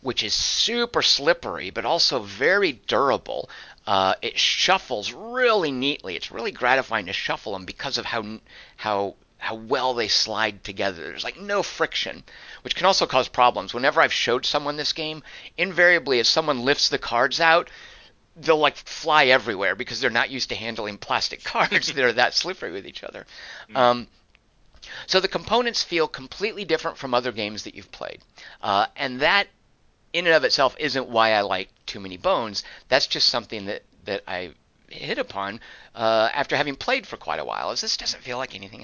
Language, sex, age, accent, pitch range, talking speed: English, male, 50-69, American, 105-160 Hz, 180 wpm